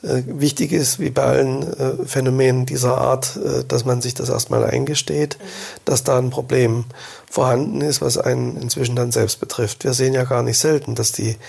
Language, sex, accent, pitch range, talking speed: German, male, German, 125-145 Hz, 180 wpm